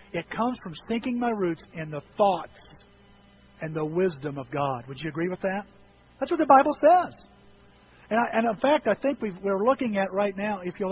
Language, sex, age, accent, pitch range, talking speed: English, male, 50-69, American, 175-235 Hz, 205 wpm